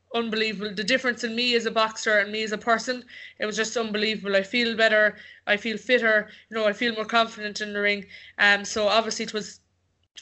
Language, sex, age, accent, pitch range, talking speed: English, female, 20-39, Irish, 205-230 Hz, 230 wpm